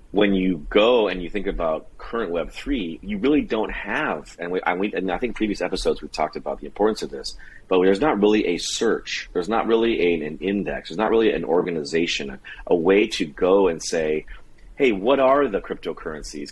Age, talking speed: 30-49, 200 wpm